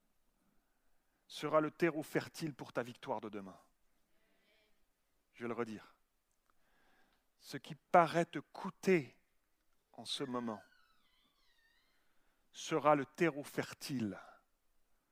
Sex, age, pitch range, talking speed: male, 40-59, 120-155 Hz, 100 wpm